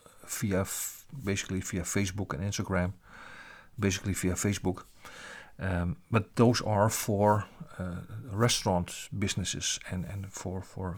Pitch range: 95-110 Hz